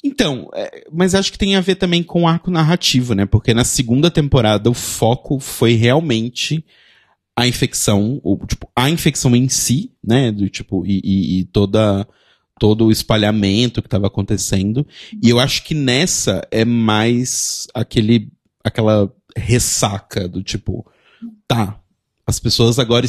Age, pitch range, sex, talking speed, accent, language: 30-49, 105-135 Hz, male, 150 wpm, Brazilian, Portuguese